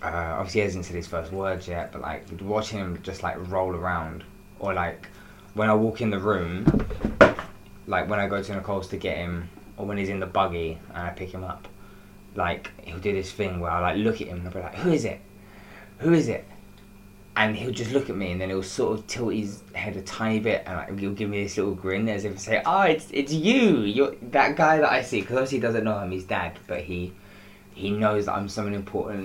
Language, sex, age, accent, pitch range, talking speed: English, male, 20-39, British, 90-100 Hz, 250 wpm